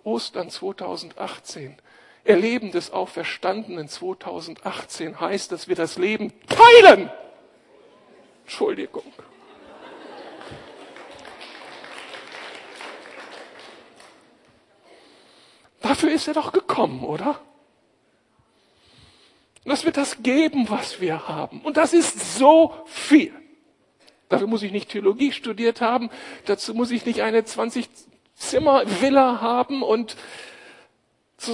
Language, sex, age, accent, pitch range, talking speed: German, male, 60-79, German, 210-280 Hz, 95 wpm